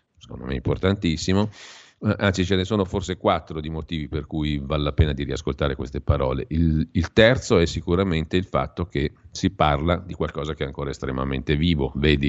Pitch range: 75-90 Hz